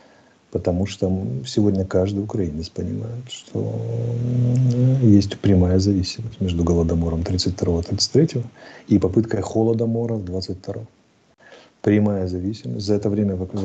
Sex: male